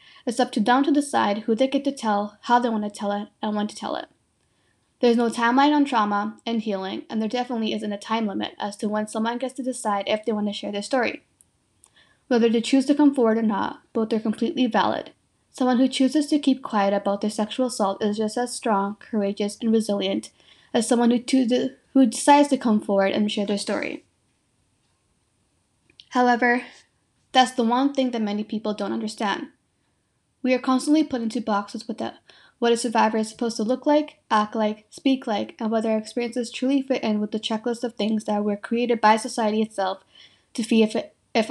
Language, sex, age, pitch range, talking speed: English, female, 10-29, 215-250 Hz, 205 wpm